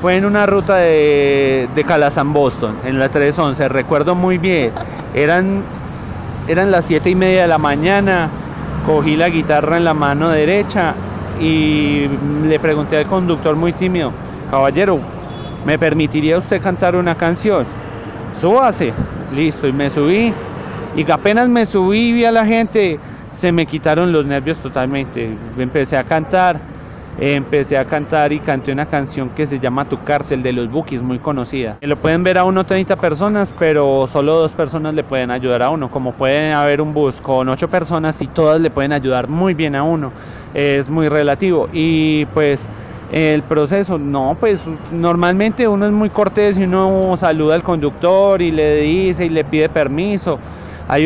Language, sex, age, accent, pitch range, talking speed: Spanish, male, 30-49, Colombian, 140-175 Hz, 170 wpm